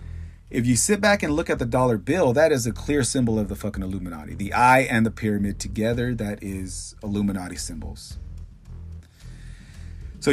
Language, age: English, 40-59